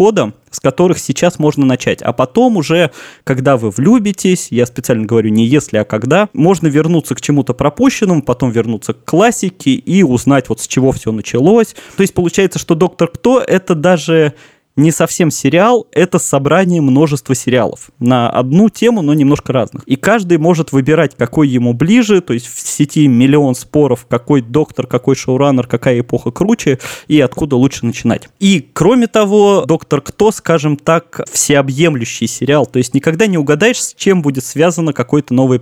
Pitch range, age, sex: 125-170 Hz, 20-39, male